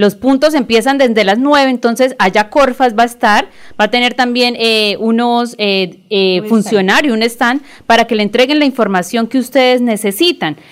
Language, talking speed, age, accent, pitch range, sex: Spanish, 180 wpm, 30-49, Colombian, 215-265 Hz, female